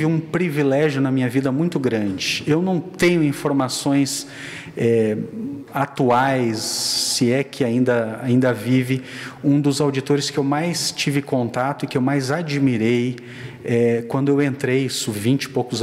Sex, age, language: male, 40-59, Portuguese